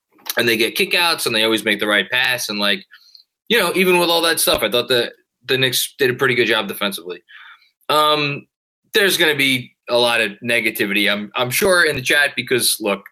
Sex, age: male, 20-39